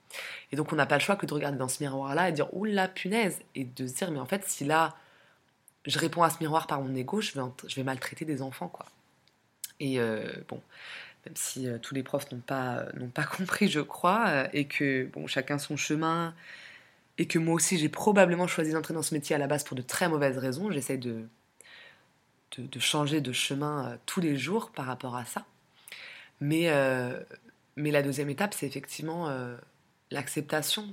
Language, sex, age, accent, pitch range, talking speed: French, female, 20-39, French, 130-160 Hz, 225 wpm